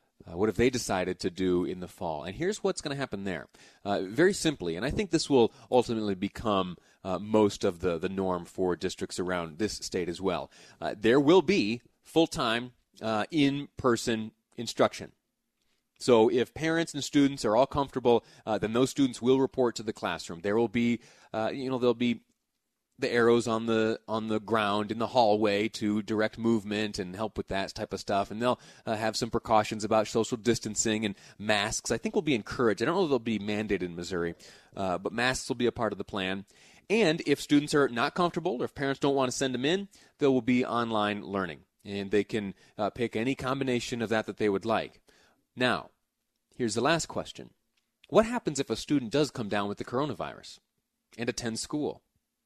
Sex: male